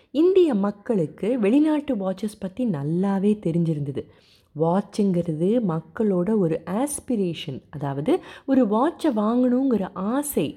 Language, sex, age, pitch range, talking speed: Tamil, female, 30-49, 170-245 Hz, 90 wpm